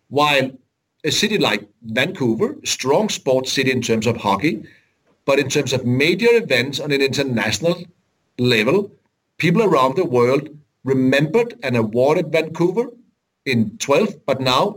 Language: English